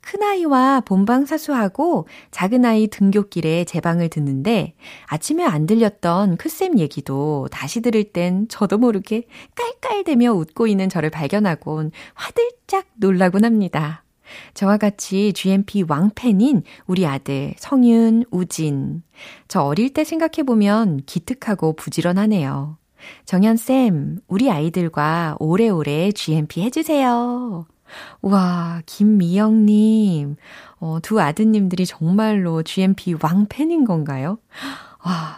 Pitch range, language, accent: 155-220 Hz, Korean, native